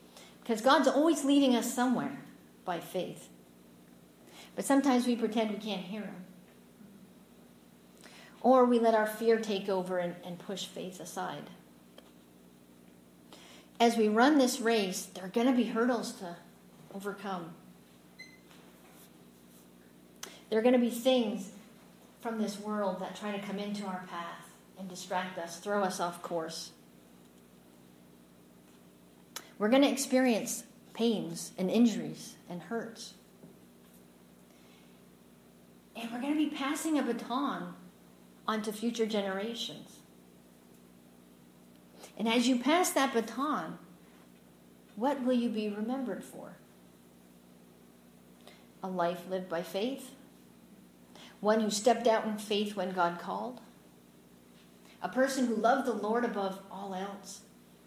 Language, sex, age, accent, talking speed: English, female, 50-69, American, 125 wpm